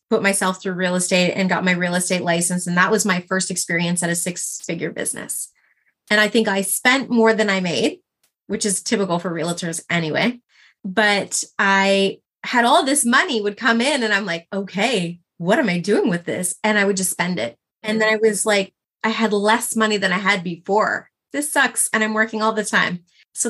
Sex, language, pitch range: female, English, 180-215 Hz